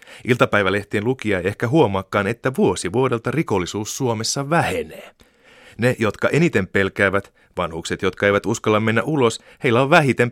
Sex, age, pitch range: male, 30-49, 90-120 Hz